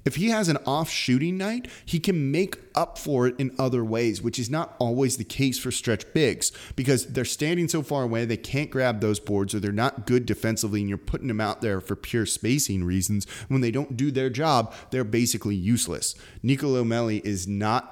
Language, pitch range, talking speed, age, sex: English, 105-135 Hz, 210 wpm, 30-49, male